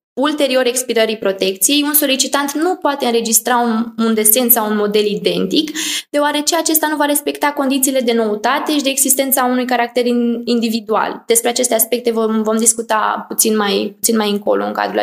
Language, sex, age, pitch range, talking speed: Romanian, female, 20-39, 220-280 Hz, 170 wpm